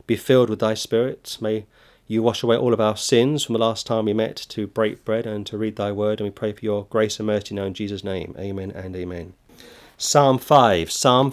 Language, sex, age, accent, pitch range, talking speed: English, male, 30-49, British, 110-130 Hz, 240 wpm